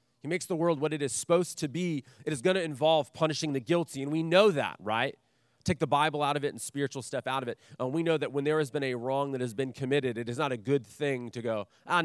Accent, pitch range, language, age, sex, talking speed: American, 125-155 Hz, English, 30-49, male, 290 wpm